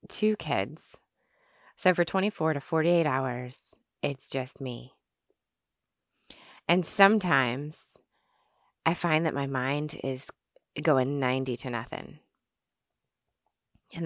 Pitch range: 130-175 Hz